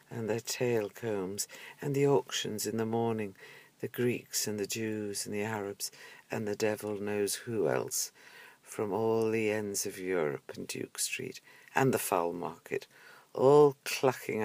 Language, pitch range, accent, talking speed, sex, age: English, 105-135 Hz, British, 160 wpm, female, 60-79